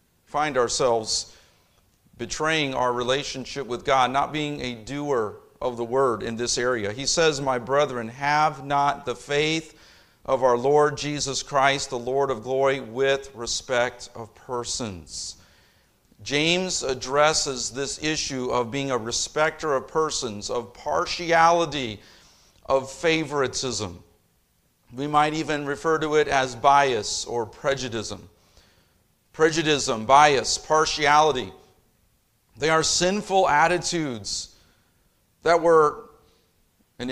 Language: English